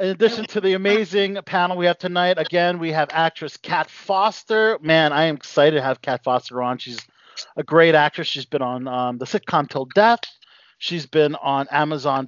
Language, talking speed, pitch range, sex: English, 195 wpm, 150-215 Hz, male